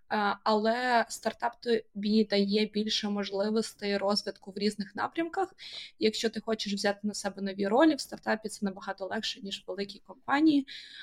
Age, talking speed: 20-39, 145 wpm